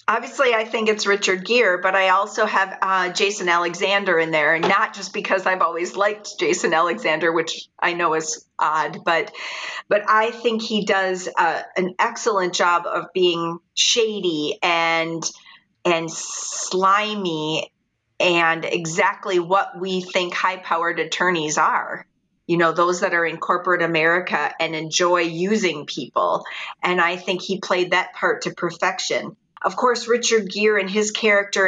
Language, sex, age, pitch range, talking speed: English, female, 40-59, 170-200 Hz, 155 wpm